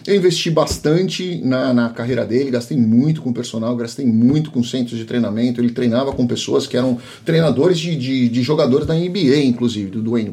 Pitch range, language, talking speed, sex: 125-165 Hz, Portuguese, 190 wpm, male